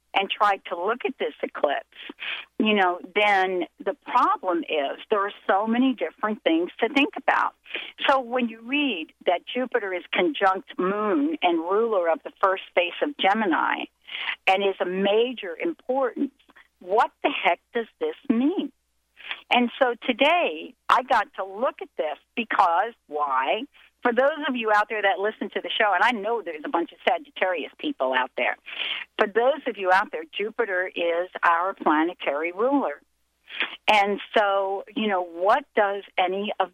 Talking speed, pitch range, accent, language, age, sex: 165 wpm, 185-270 Hz, American, English, 50-69, female